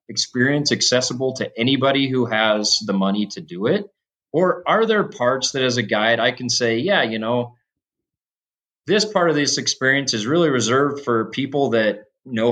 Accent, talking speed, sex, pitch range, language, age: American, 175 wpm, male, 110-140 Hz, English, 30-49